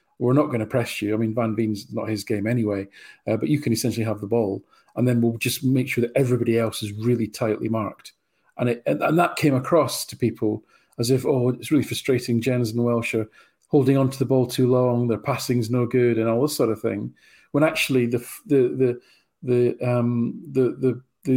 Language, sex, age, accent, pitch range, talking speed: English, male, 40-59, British, 115-135 Hz, 225 wpm